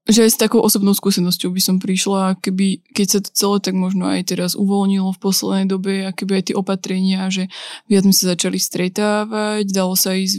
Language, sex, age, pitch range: Slovak, female, 20-39, 190-210 Hz